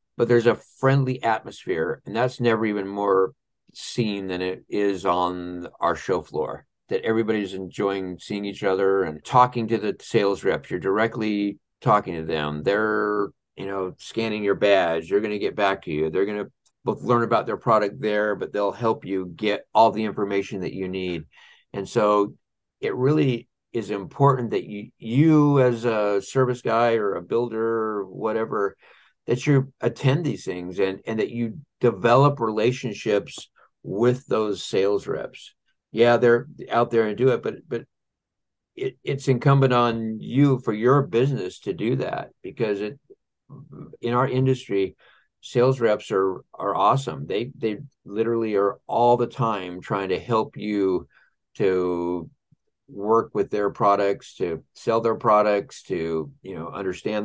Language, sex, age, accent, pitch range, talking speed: English, male, 50-69, American, 100-120 Hz, 160 wpm